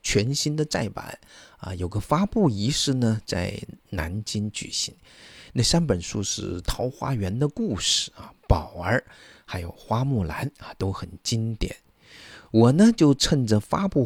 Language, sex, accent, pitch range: Chinese, male, native, 95-135 Hz